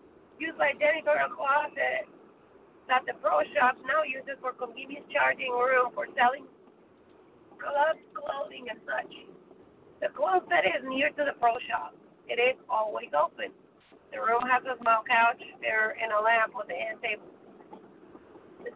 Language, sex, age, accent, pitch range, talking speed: English, female, 30-49, American, 235-320 Hz, 155 wpm